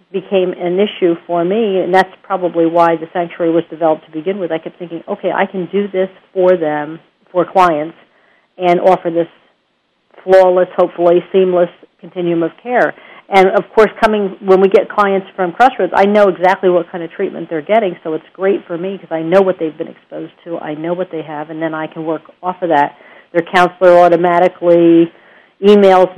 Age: 50-69